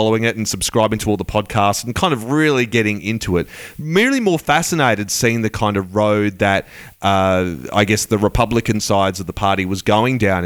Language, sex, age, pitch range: English, male, 30-49, 100-125 Hz